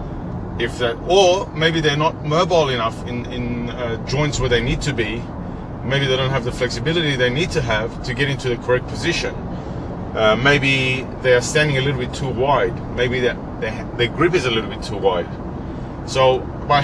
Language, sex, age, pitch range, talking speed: English, male, 30-49, 120-150 Hz, 200 wpm